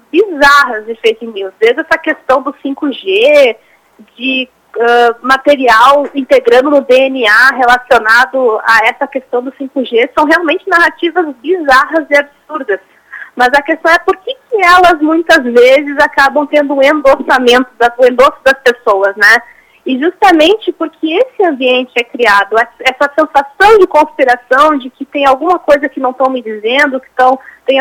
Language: Portuguese